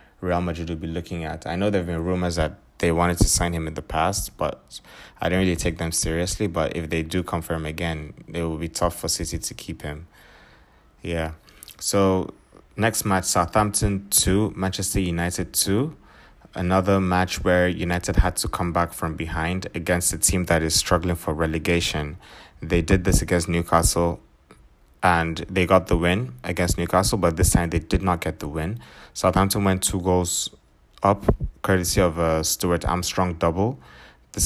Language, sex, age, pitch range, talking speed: English, male, 20-39, 80-95 Hz, 180 wpm